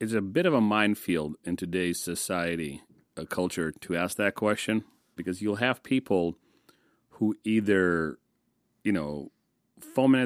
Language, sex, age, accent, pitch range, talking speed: English, male, 40-59, American, 90-115 Hz, 145 wpm